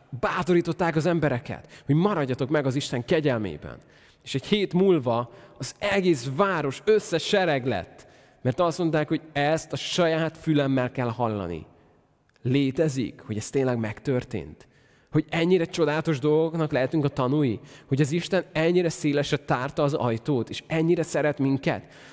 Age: 20-39